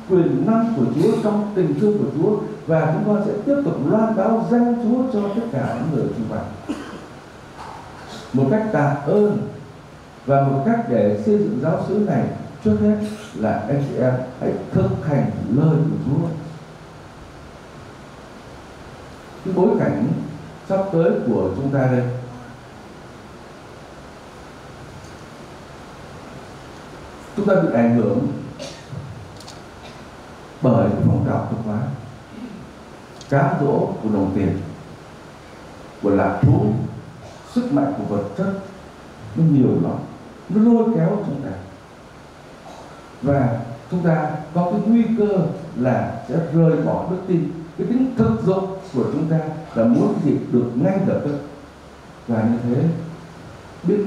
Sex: male